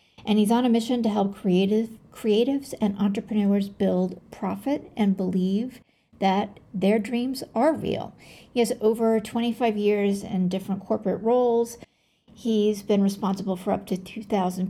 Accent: American